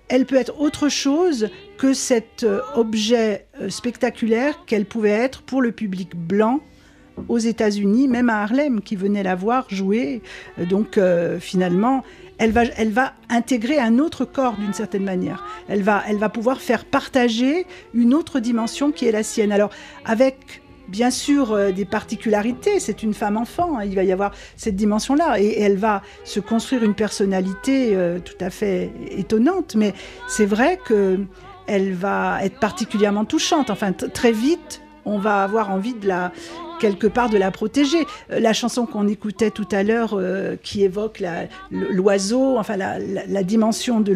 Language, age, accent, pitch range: French, 50-69, French, 200-255 Hz